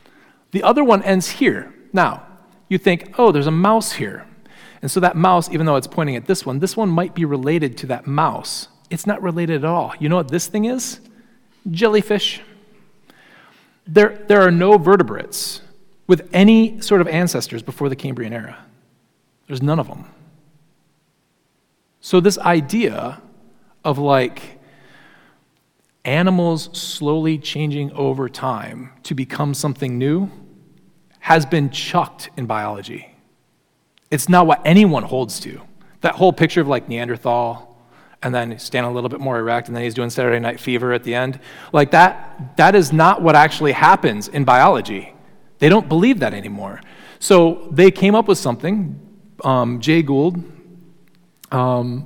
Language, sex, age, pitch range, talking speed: English, male, 40-59, 130-185 Hz, 155 wpm